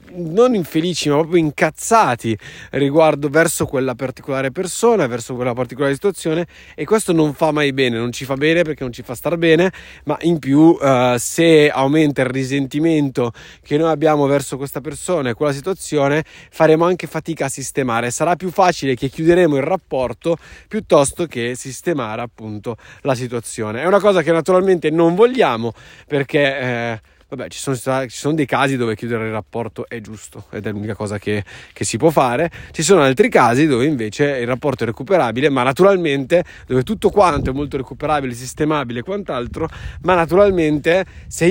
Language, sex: Italian, male